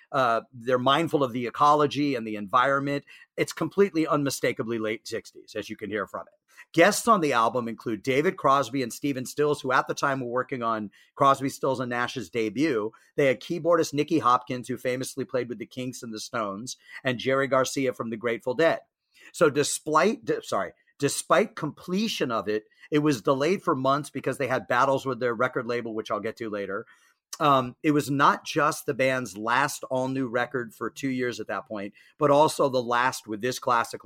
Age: 40-59